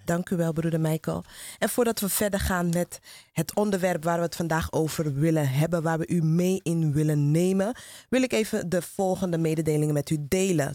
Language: Dutch